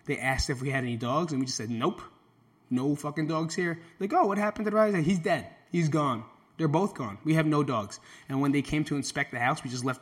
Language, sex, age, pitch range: English, male, 20-39, 125-165 Hz